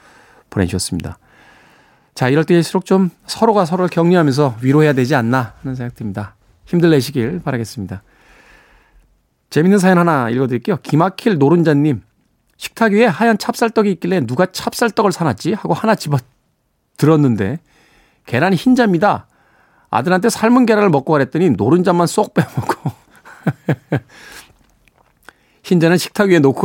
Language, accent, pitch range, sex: Korean, native, 120-180 Hz, male